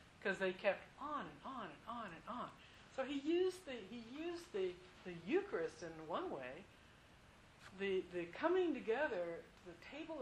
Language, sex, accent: English, female, American